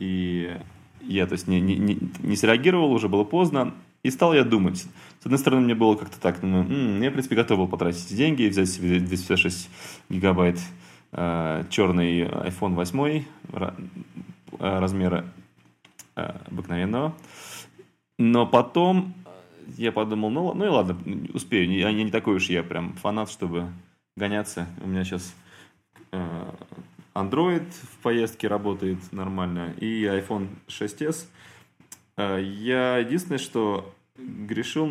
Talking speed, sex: 130 wpm, male